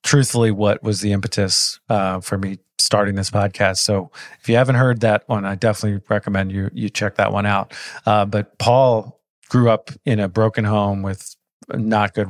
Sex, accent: male, American